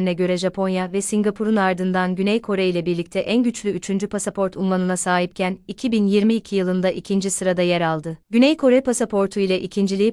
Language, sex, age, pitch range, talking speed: Turkish, female, 30-49, 185-215 Hz, 155 wpm